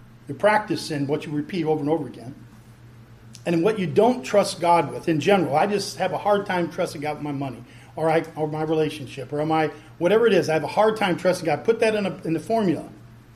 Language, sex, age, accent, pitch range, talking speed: English, male, 40-59, American, 120-170 Hz, 245 wpm